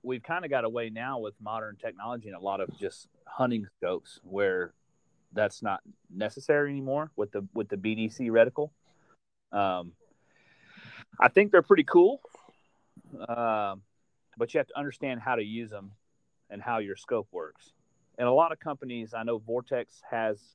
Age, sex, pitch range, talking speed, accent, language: 30-49, male, 100-135 Hz, 165 wpm, American, English